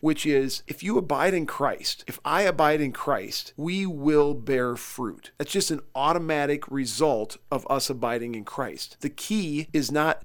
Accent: American